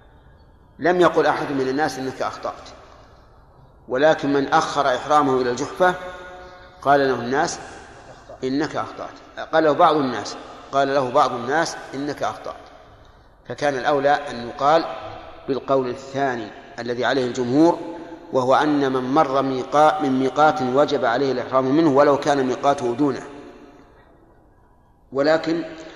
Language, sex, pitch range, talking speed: Arabic, male, 130-160 Hz, 125 wpm